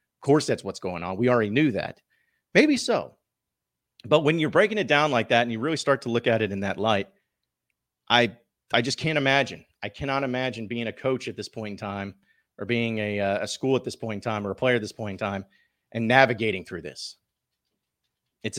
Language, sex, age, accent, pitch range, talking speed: English, male, 40-59, American, 105-130 Hz, 225 wpm